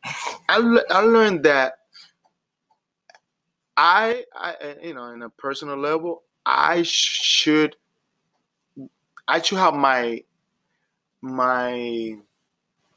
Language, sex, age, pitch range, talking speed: English, male, 20-39, 120-170 Hz, 95 wpm